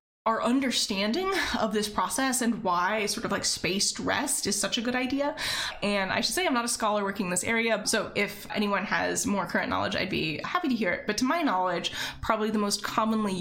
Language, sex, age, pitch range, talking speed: English, female, 20-39, 205-250 Hz, 225 wpm